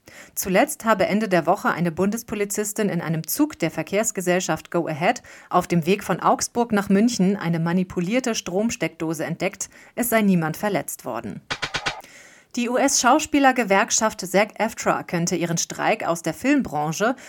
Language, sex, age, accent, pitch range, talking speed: German, female, 30-49, German, 175-230 Hz, 140 wpm